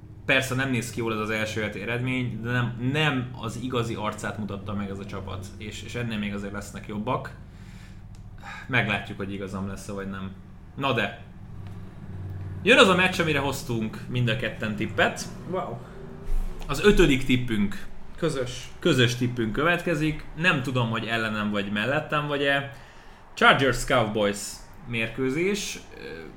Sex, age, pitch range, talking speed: male, 20-39, 105-130 Hz, 140 wpm